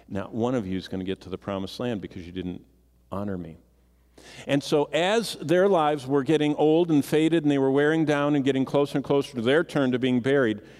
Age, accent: 50-69, American